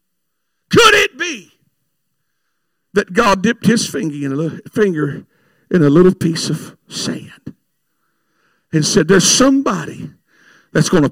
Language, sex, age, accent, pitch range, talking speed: English, male, 50-69, American, 185-275 Hz, 130 wpm